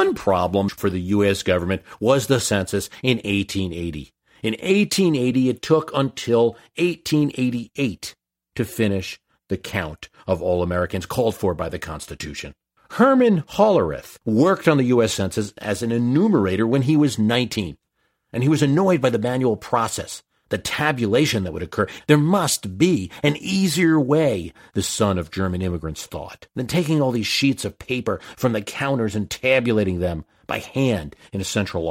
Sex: male